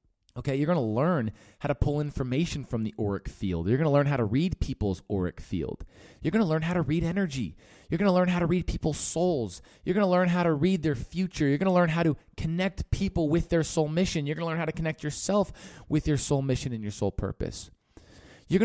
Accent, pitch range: American, 110-165 Hz